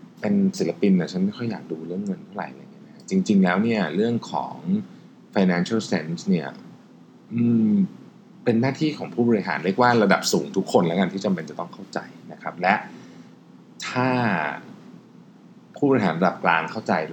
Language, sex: Thai, male